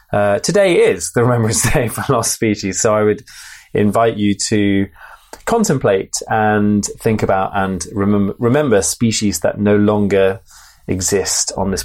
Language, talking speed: English, 140 wpm